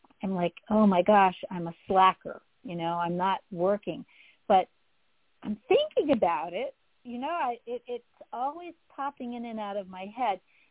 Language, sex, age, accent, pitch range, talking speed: English, female, 50-69, American, 175-215 Hz, 175 wpm